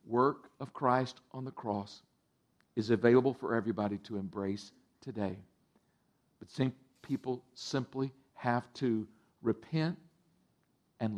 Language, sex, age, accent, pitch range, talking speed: English, male, 50-69, American, 105-130 Hz, 105 wpm